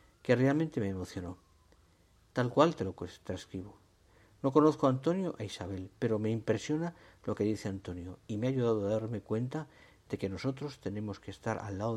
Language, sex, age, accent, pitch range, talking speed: Spanish, male, 50-69, Spanish, 100-120 Hz, 185 wpm